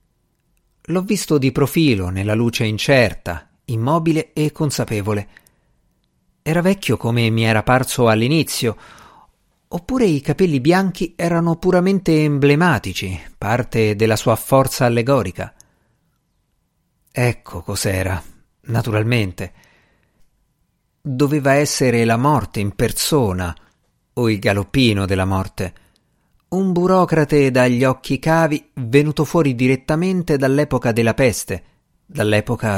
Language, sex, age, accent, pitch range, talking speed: Italian, male, 50-69, native, 105-150 Hz, 100 wpm